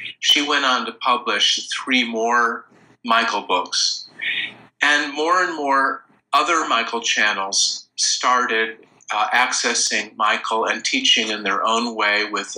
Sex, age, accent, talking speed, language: male, 50-69, American, 130 wpm, English